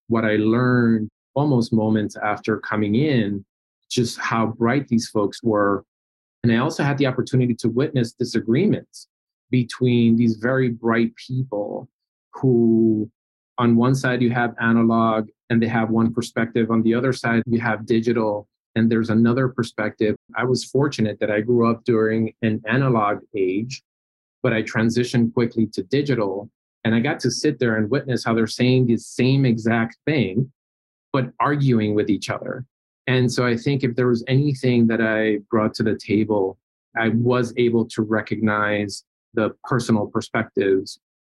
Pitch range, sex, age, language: 105-120 Hz, male, 30-49, English